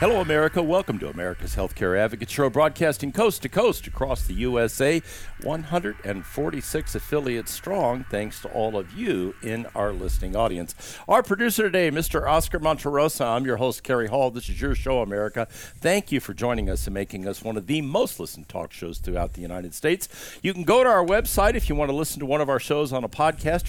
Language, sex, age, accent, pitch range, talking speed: English, male, 60-79, American, 110-150 Hz, 205 wpm